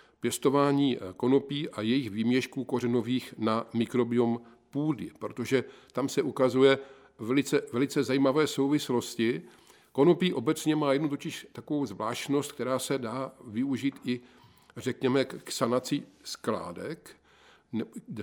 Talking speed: 110 wpm